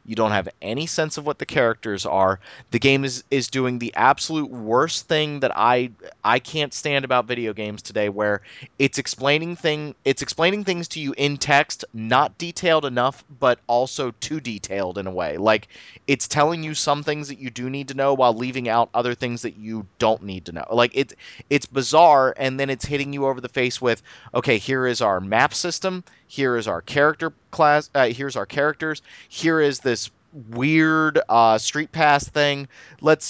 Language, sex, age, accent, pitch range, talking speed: English, male, 30-49, American, 120-145 Hz, 195 wpm